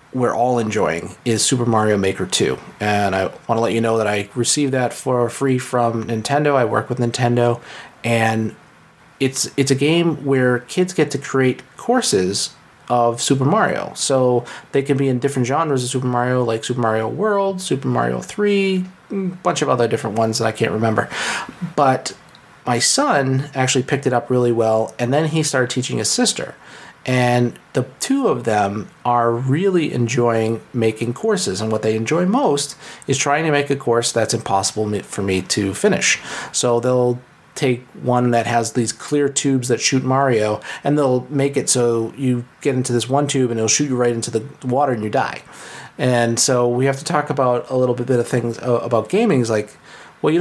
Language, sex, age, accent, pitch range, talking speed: English, male, 30-49, American, 115-140 Hz, 195 wpm